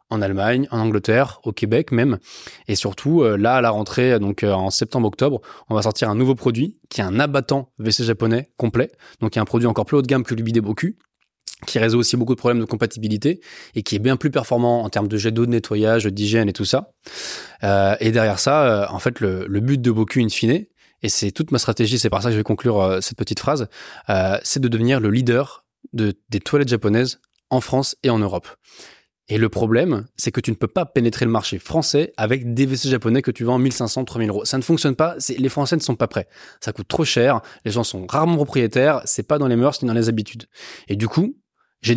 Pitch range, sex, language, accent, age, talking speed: 110-135 Hz, male, French, French, 20-39, 245 wpm